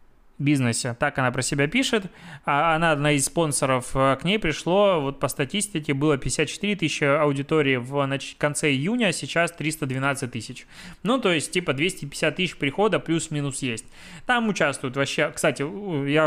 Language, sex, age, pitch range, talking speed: Russian, male, 20-39, 130-165 Hz, 155 wpm